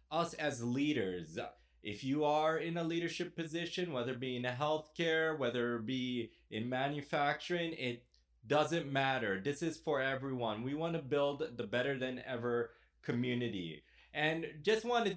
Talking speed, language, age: 155 wpm, English, 20-39